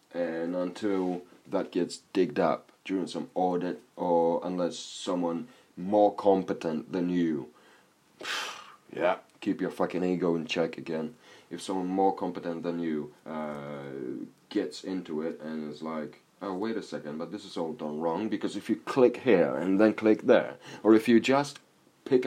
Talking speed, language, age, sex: 165 wpm, English, 30-49, male